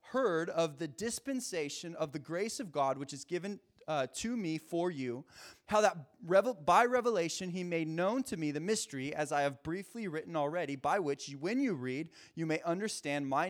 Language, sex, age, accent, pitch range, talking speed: English, male, 20-39, American, 150-205 Hz, 190 wpm